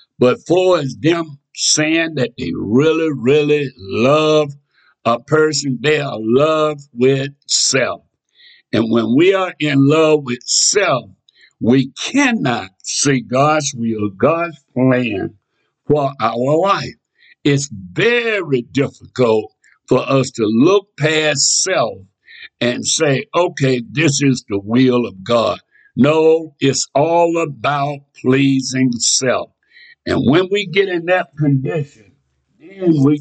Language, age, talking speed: English, 60-79, 125 wpm